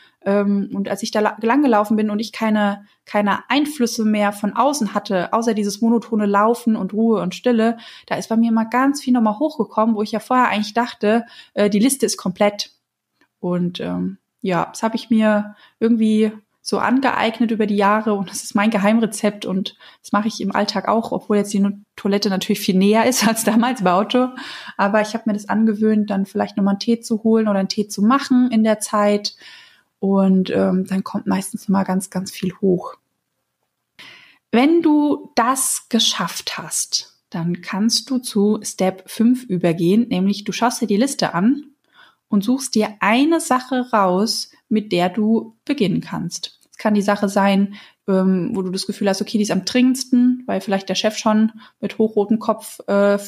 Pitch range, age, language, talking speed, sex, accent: 200-230 Hz, 20-39, German, 185 wpm, female, German